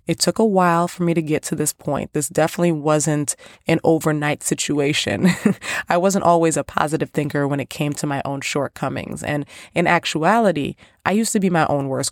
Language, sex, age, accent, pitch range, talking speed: English, female, 20-39, American, 145-170 Hz, 200 wpm